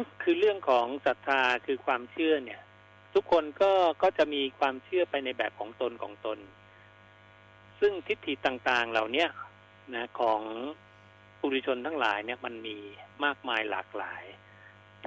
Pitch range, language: 105-145 Hz, Thai